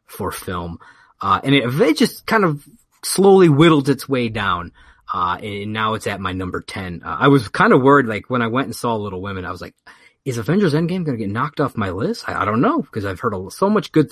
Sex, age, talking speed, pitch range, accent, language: male, 30-49, 255 wpm, 100-145 Hz, American, English